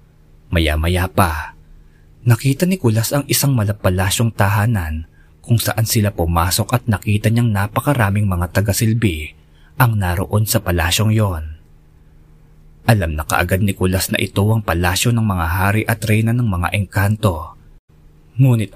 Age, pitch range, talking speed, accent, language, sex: 20-39, 80-115 Hz, 135 wpm, native, Filipino, male